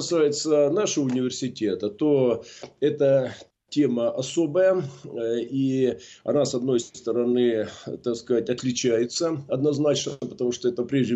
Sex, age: male, 40-59